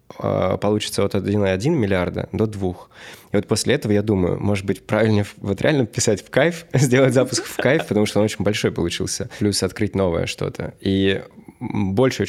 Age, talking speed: 20-39, 175 wpm